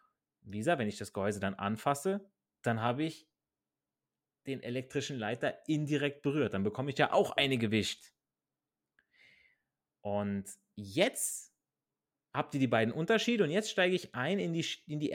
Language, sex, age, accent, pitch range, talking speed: German, male, 30-49, German, 115-185 Hz, 145 wpm